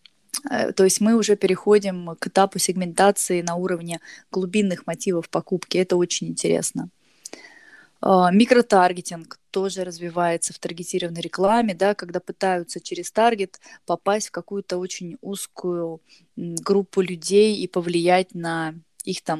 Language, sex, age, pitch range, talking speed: Russian, female, 20-39, 180-210 Hz, 115 wpm